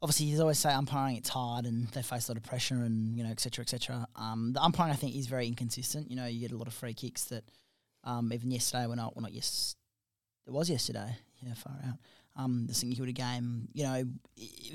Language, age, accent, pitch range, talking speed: English, 20-39, Australian, 115-140 Hz, 255 wpm